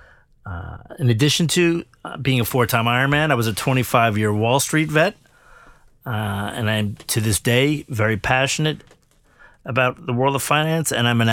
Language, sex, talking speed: English, male, 165 wpm